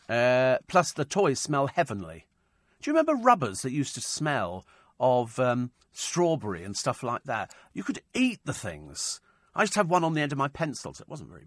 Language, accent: English, British